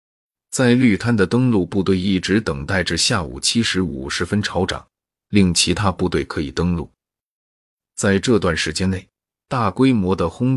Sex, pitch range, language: male, 85-105 Hz, Chinese